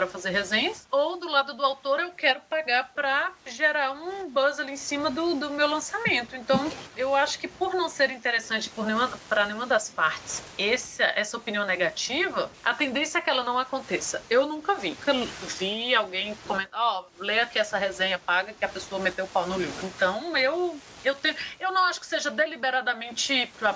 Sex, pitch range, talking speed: female, 210-295 Hz, 200 wpm